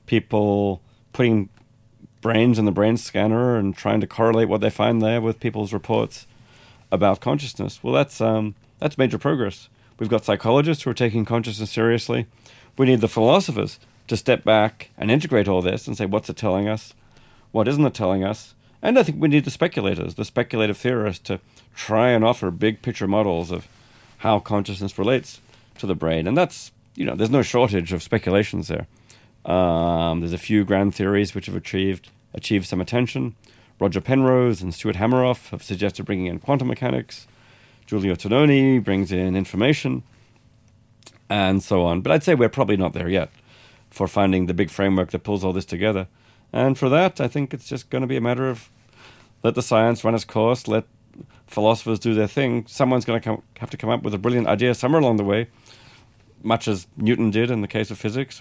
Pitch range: 100-120 Hz